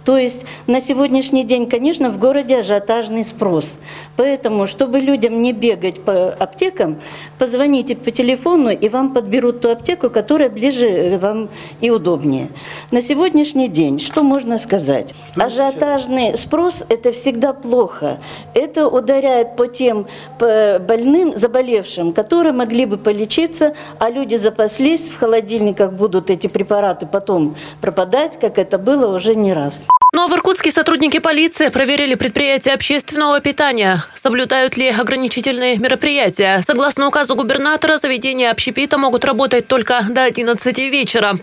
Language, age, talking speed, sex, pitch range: Russian, 40-59, 130 wpm, female, 220-275 Hz